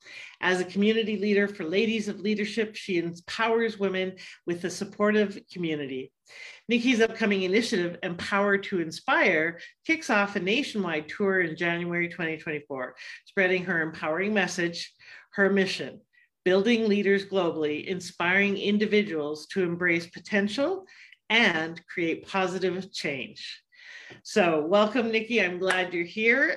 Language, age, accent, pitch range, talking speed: English, 50-69, American, 175-225 Hz, 120 wpm